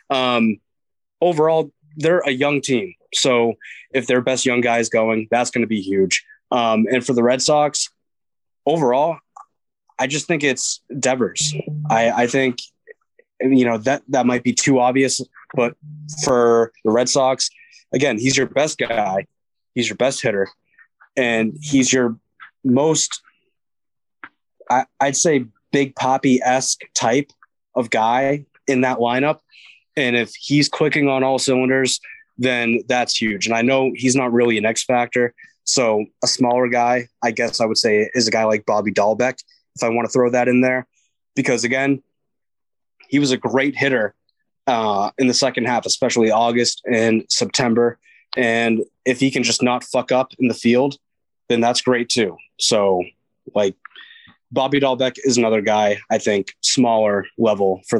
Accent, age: American, 20-39